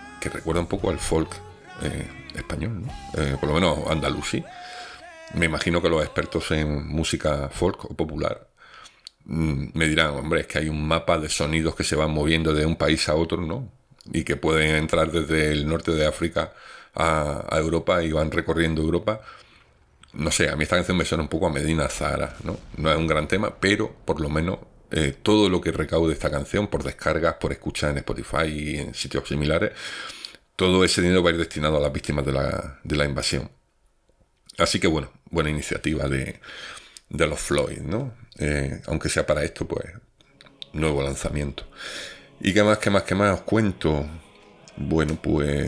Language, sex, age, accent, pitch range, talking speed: Spanish, male, 50-69, Spanish, 75-90 Hz, 190 wpm